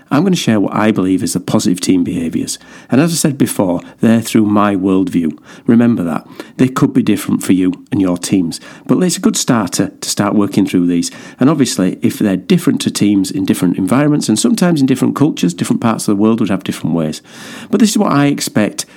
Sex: male